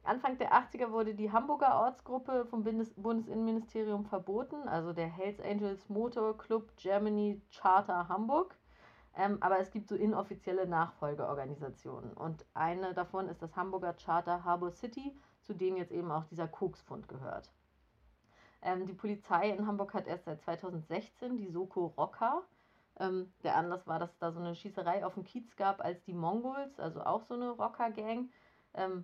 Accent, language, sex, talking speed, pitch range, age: German, German, female, 160 wpm, 170-215 Hz, 30-49